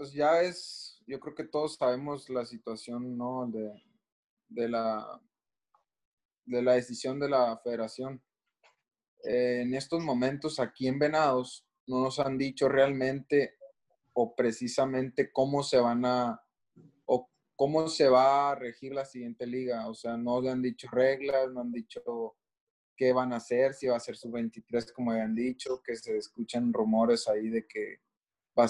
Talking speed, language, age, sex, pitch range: 165 wpm, Spanish, 20-39, male, 120-140 Hz